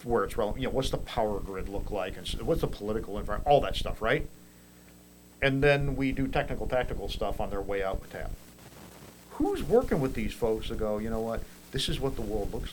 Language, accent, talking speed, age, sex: English, American, 230 wpm, 50-69, male